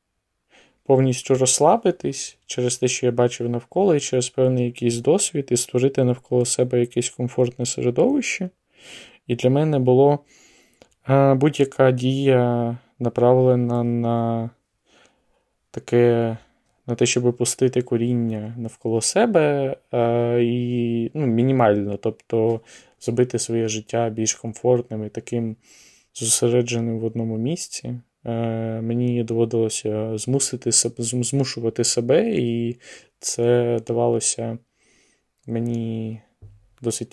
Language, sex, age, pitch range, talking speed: Ukrainian, male, 20-39, 115-125 Hz, 95 wpm